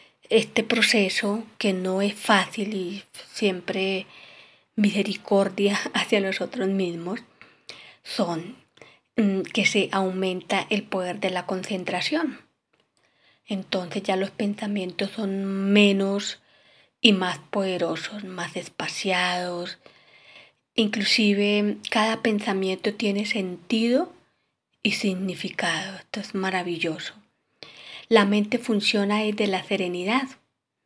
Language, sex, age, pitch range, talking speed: Spanish, female, 20-39, 185-215 Hz, 95 wpm